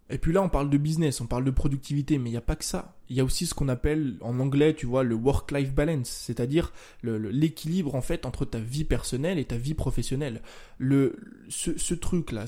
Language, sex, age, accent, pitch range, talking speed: French, male, 20-39, French, 125-155 Hz, 240 wpm